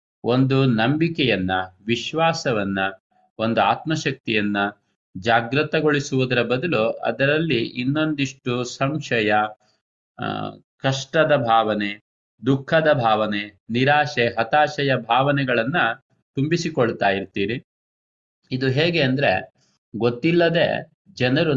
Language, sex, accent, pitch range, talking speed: Kannada, male, native, 115-150 Hz, 70 wpm